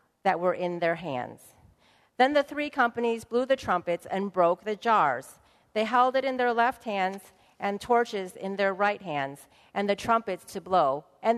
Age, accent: 40-59, American